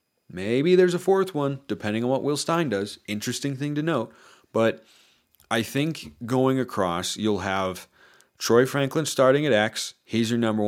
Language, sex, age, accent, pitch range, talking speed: English, male, 30-49, American, 95-120 Hz, 170 wpm